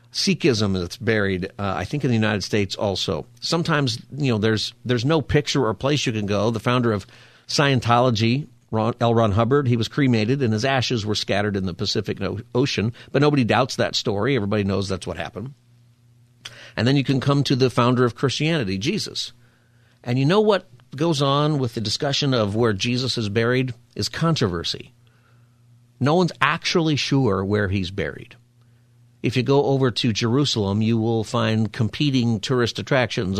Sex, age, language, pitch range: male, 50-69, English, 105-130 Hz